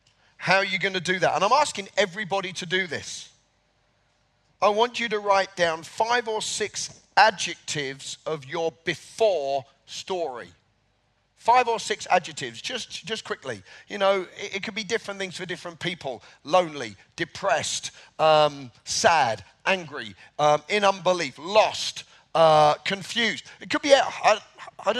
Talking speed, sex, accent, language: 150 wpm, male, British, English